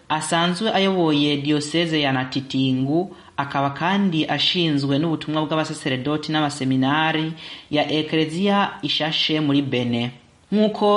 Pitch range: 140-170 Hz